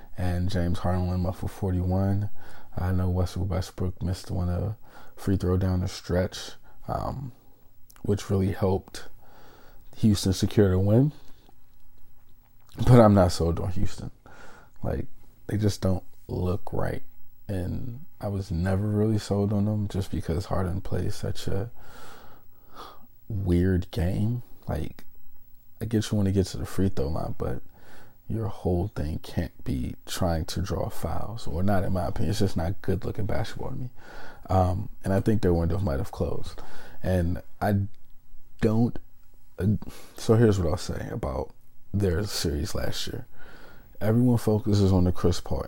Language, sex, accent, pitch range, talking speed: English, male, American, 95-115 Hz, 160 wpm